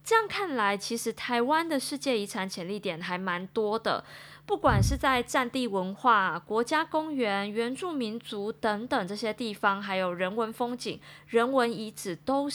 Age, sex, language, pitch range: 20-39, female, Chinese, 190-250 Hz